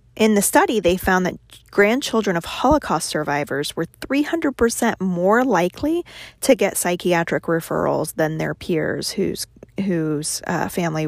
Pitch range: 165-205 Hz